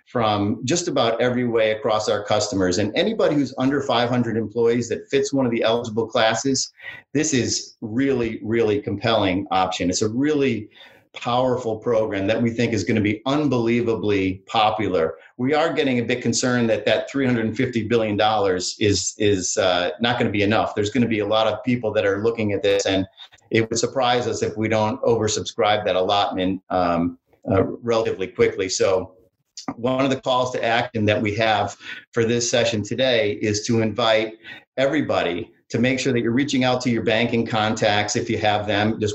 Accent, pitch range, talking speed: American, 105-125 Hz, 185 wpm